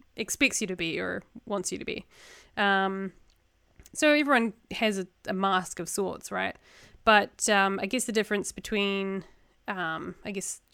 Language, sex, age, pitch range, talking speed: English, female, 20-39, 190-225 Hz, 160 wpm